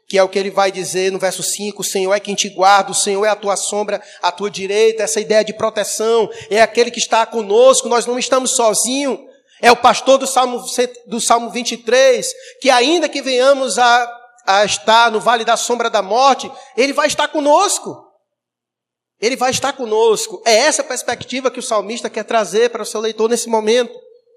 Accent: Brazilian